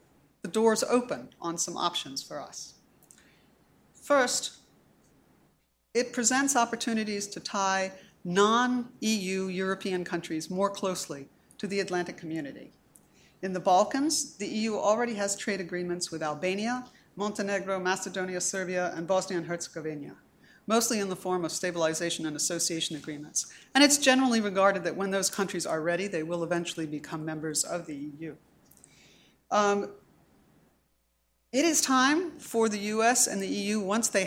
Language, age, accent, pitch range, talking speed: English, 40-59, American, 175-215 Hz, 140 wpm